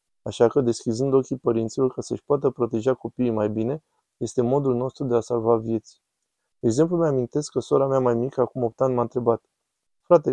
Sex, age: male, 20-39